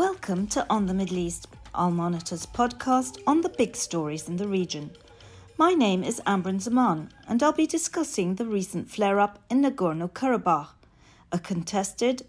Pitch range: 170-240 Hz